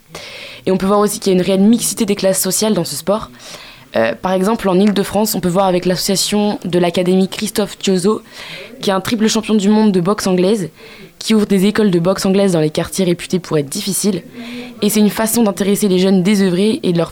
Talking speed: 230 wpm